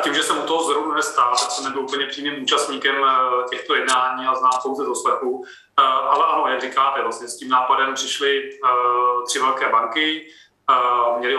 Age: 30-49